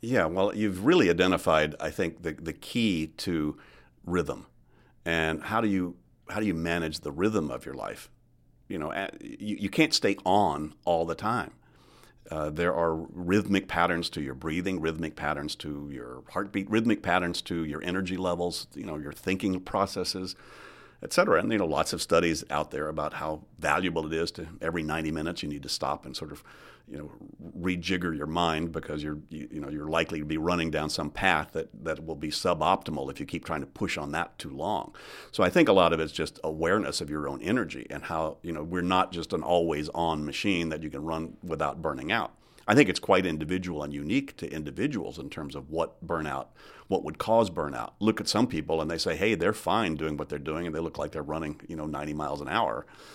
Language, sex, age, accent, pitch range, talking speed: English, male, 50-69, American, 75-90 Hz, 220 wpm